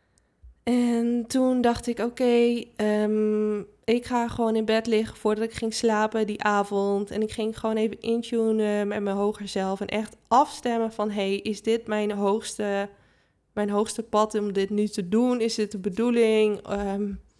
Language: Dutch